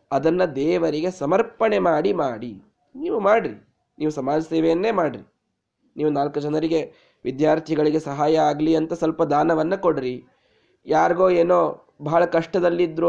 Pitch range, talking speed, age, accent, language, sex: 155-205 Hz, 115 wpm, 20-39, native, Kannada, male